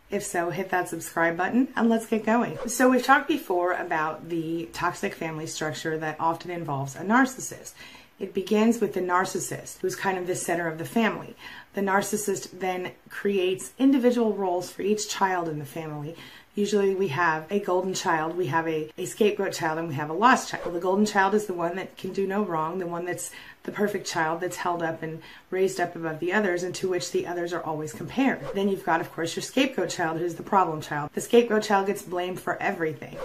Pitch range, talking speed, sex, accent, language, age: 165-210 Hz, 215 wpm, female, American, English, 30-49